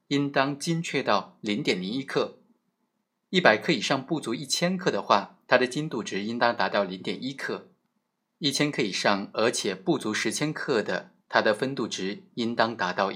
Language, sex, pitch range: Chinese, male, 105-165 Hz